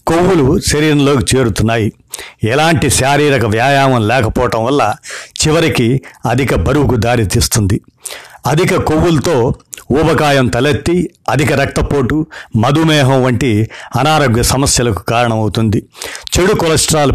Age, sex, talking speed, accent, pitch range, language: 60-79, male, 90 wpm, native, 120-145 Hz, Telugu